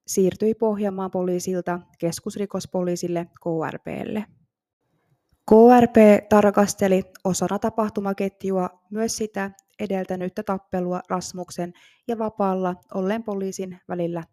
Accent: native